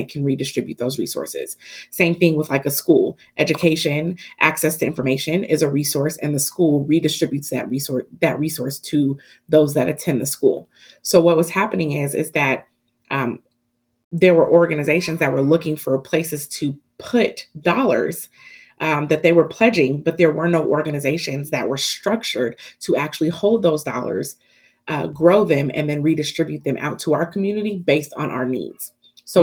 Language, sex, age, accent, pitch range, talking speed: English, female, 30-49, American, 140-170 Hz, 175 wpm